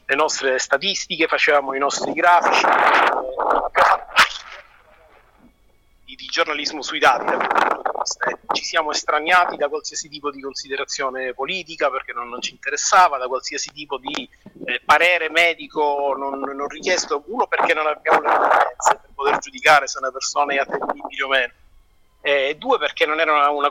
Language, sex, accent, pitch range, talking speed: Italian, male, native, 140-170 Hz, 160 wpm